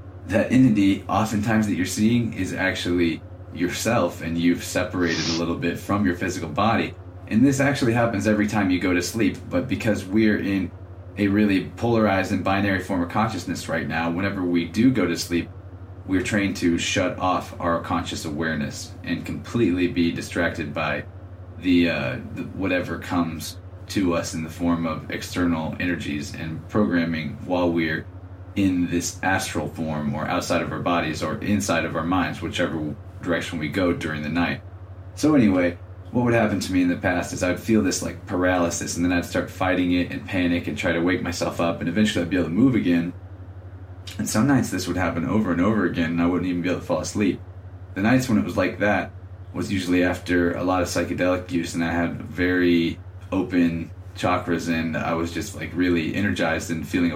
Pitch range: 85-95 Hz